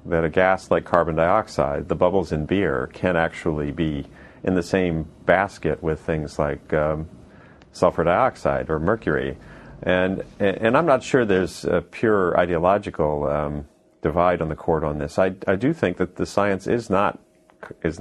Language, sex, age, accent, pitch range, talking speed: English, male, 40-59, American, 80-95 Hz, 170 wpm